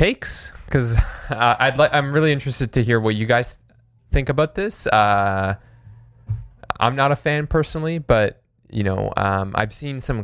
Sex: male